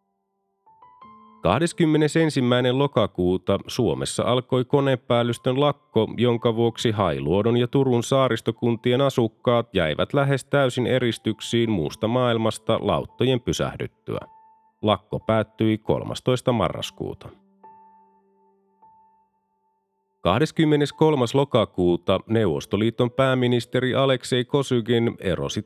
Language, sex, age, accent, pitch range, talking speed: Finnish, male, 30-49, native, 105-130 Hz, 75 wpm